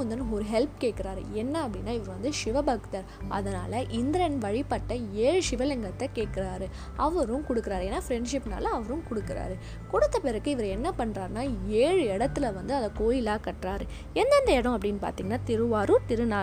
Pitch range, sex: 210-280 Hz, female